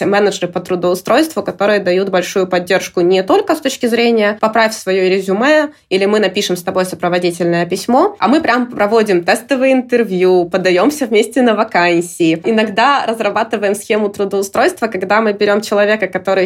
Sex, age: female, 20-39